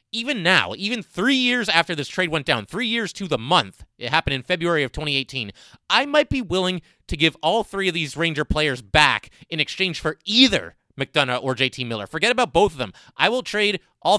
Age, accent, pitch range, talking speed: 30-49, American, 130-175 Hz, 215 wpm